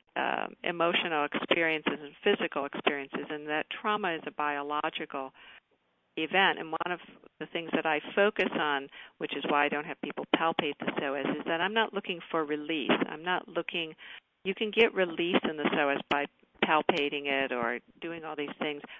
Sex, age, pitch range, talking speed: female, 50-69, 150-175 Hz, 180 wpm